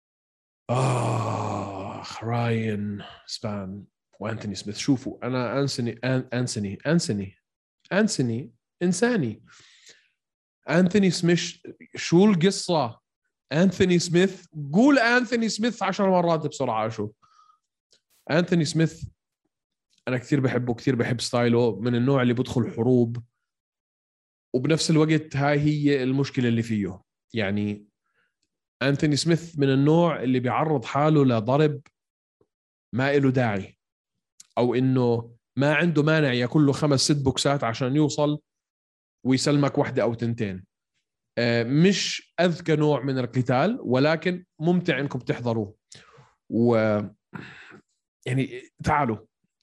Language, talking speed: Arabic, 100 wpm